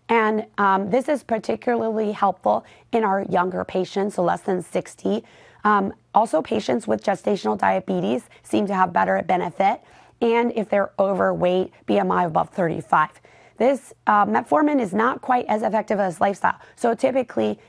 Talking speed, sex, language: 150 wpm, female, English